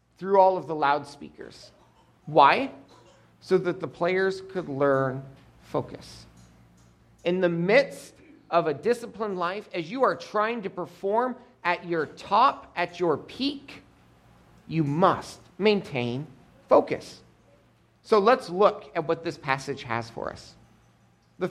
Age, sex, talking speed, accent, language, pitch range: 40-59, male, 130 wpm, American, English, 125-195 Hz